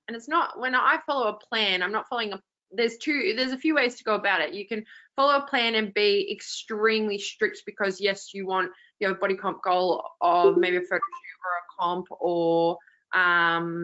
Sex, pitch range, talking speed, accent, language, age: female, 175-215 Hz, 210 wpm, Australian, English, 20-39